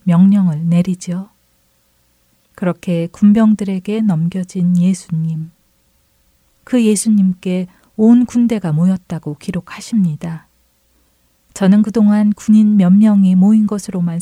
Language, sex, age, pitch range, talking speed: English, female, 40-59, 170-215 Hz, 80 wpm